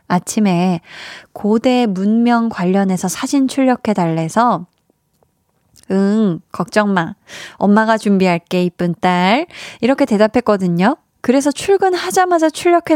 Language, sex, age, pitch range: Korean, female, 20-39, 190-250 Hz